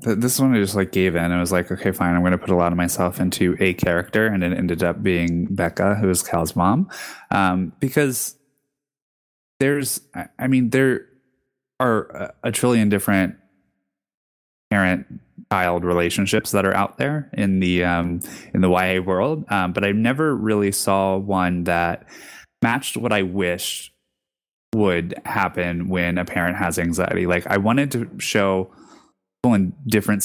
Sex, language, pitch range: male, English, 90-110 Hz